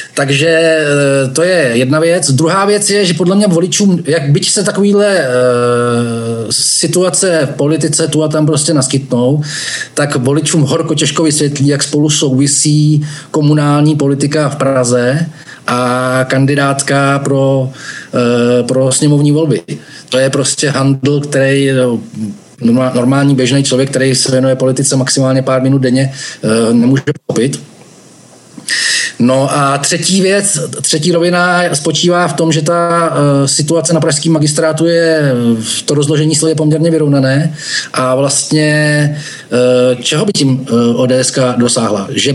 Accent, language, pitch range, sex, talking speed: native, Czech, 130-155 Hz, male, 130 wpm